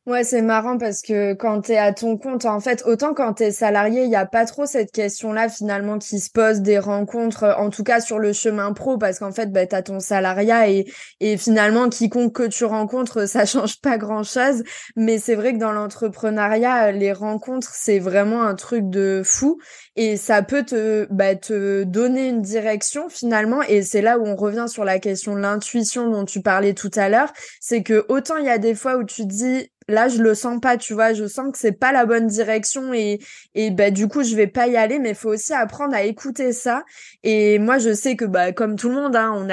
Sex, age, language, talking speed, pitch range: female, 20-39, French, 235 wpm, 205-240 Hz